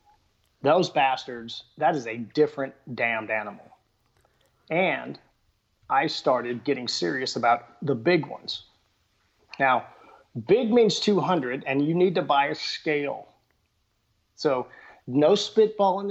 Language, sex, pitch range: English, male, 120-160 Hz